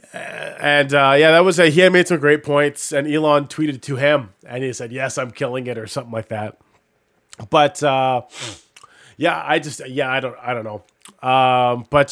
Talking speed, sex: 205 wpm, male